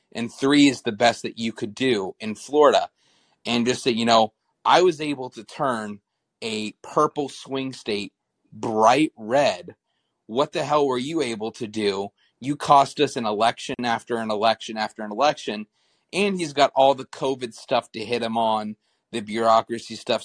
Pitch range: 115-145 Hz